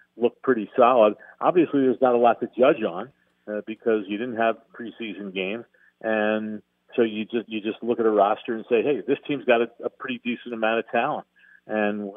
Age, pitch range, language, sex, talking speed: 50-69, 105-125 Hz, English, male, 210 wpm